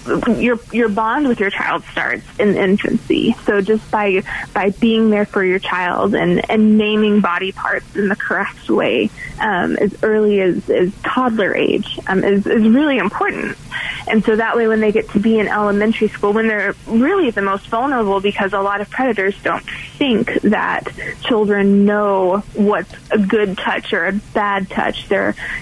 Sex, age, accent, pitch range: female, 20-39, American, 200-230 Hz